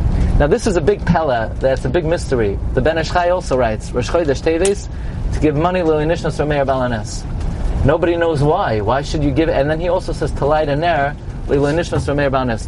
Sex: male